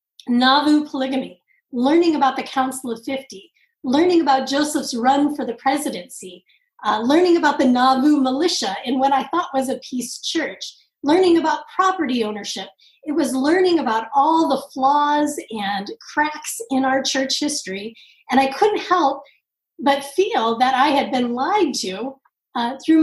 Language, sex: English, female